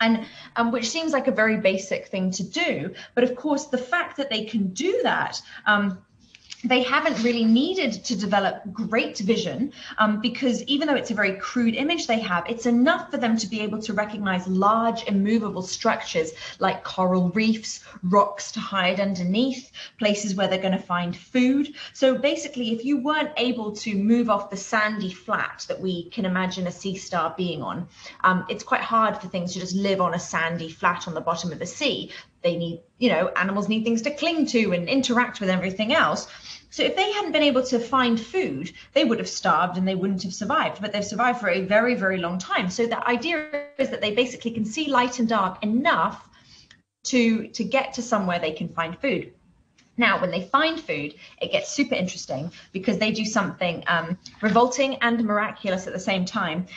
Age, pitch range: 30-49, 190-250 Hz